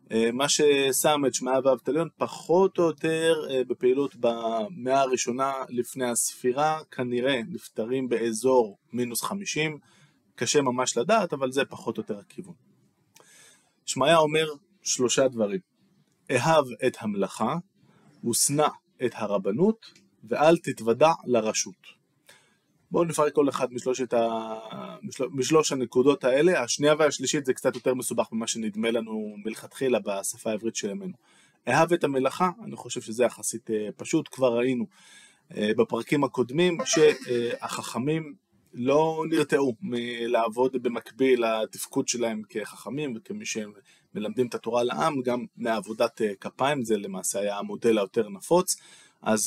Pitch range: 115-150 Hz